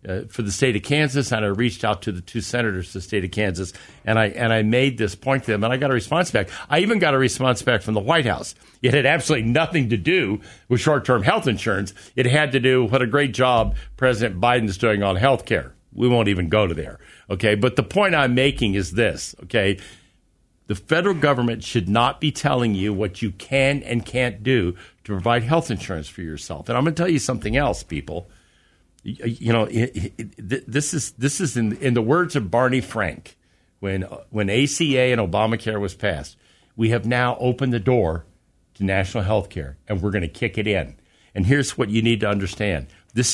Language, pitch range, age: English, 100-130 Hz, 50-69